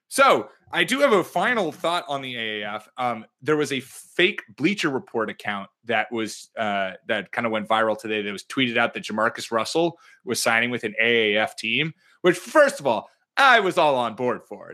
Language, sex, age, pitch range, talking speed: English, male, 30-49, 115-150 Hz, 205 wpm